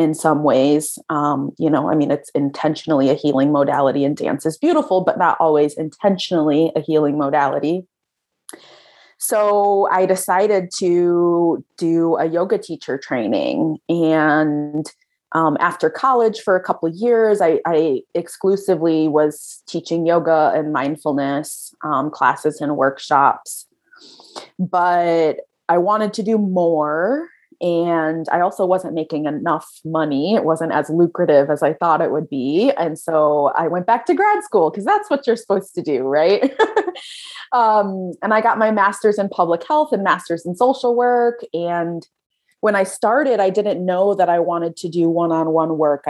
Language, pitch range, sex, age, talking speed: English, 155-205 Hz, female, 30-49, 160 wpm